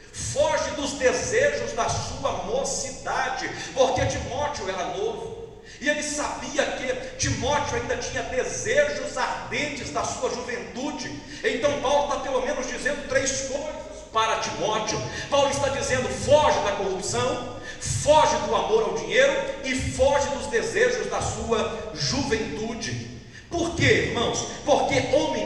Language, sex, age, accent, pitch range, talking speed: Portuguese, male, 50-69, Brazilian, 270-325 Hz, 130 wpm